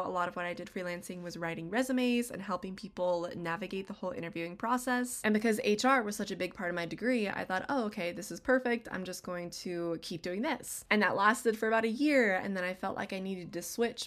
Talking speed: 250 wpm